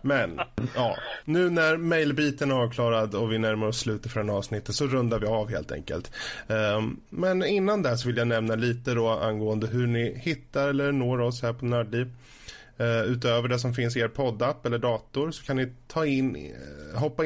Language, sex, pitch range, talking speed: Swedish, male, 110-135 Hz, 190 wpm